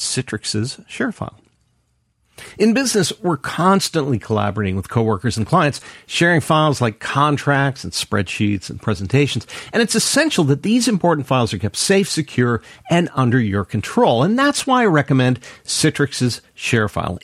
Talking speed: 145 wpm